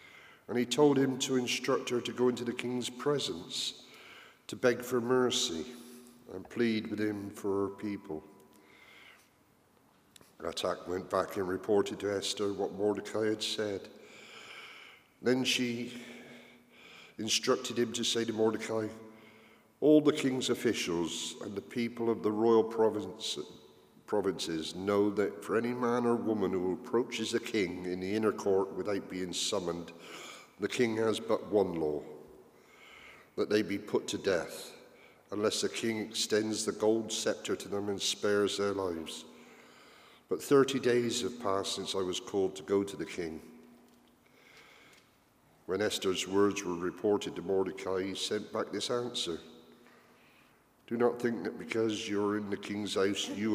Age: 50-69